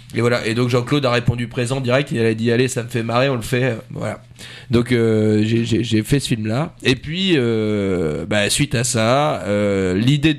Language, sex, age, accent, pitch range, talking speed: French, male, 30-49, French, 110-140 Hz, 215 wpm